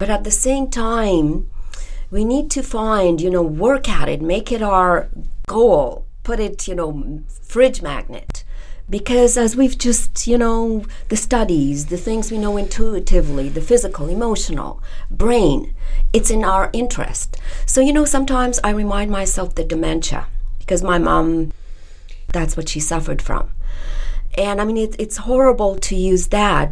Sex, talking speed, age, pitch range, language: female, 155 wpm, 40-59, 165-220 Hz, English